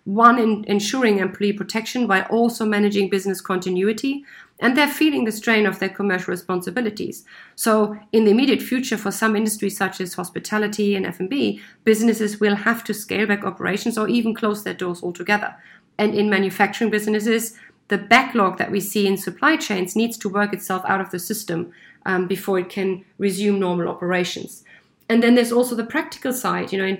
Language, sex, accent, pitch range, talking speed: English, female, German, 195-230 Hz, 180 wpm